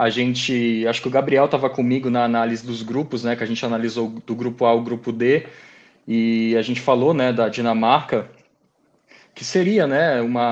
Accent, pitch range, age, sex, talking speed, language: Brazilian, 125-150 Hz, 20-39, male, 195 wpm, Portuguese